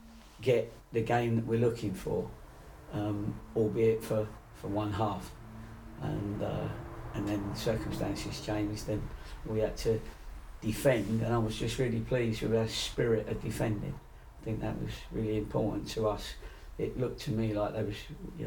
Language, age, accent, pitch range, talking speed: English, 40-59, British, 100-115 Hz, 170 wpm